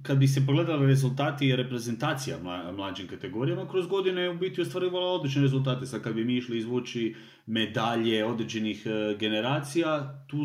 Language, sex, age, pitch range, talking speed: Croatian, male, 30-49, 115-135 Hz, 165 wpm